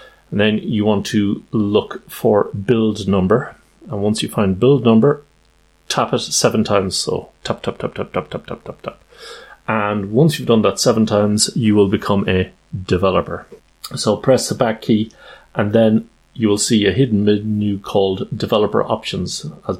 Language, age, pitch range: English, 30-49, 100-115 Hz